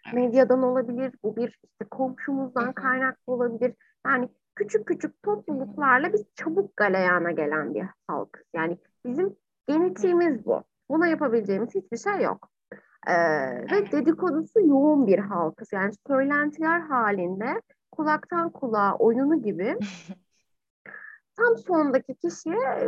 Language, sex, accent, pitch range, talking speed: Turkish, female, native, 235-335 Hz, 115 wpm